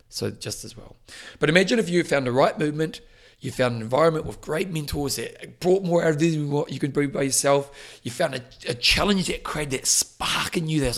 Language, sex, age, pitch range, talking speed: English, male, 40-59, 120-165 Hz, 245 wpm